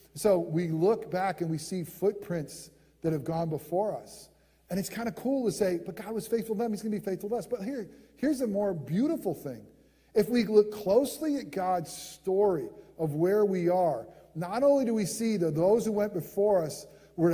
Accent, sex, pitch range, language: American, male, 180-245 Hz, English